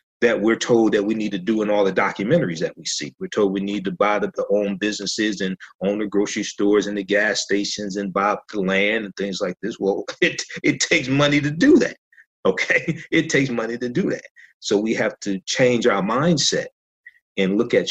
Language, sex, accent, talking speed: English, male, American, 225 wpm